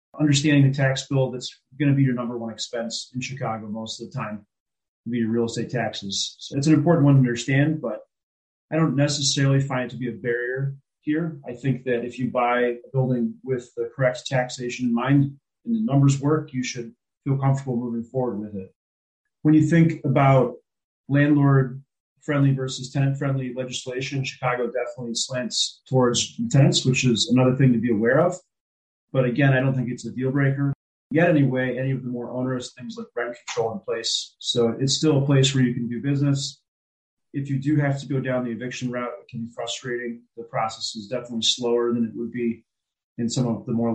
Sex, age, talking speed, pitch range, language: male, 30-49, 205 wpm, 120-140 Hz, English